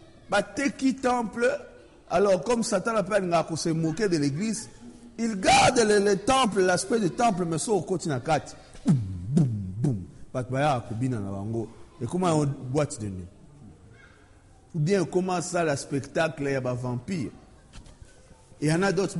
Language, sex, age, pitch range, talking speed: French, male, 50-69, 115-180 Hz, 155 wpm